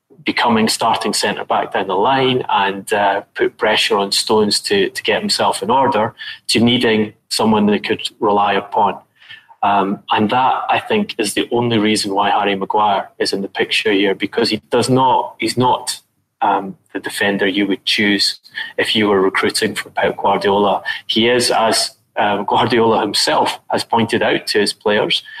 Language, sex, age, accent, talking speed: English, male, 20-39, British, 175 wpm